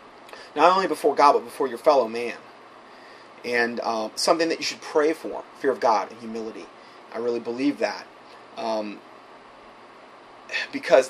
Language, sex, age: English, male, 30-49